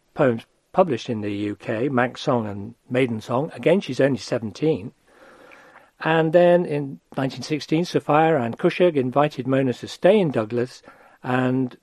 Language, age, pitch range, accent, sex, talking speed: English, 50-69, 120-160 Hz, British, male, 145 wpm